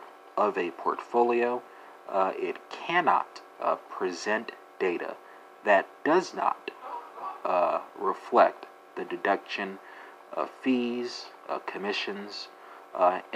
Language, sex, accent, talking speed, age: English, male, American, 95 wpm, 40-59